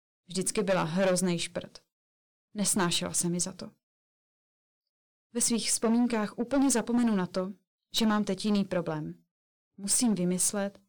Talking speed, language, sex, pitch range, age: 125 wpm, Czech, female, 180-230 Hz, 20-39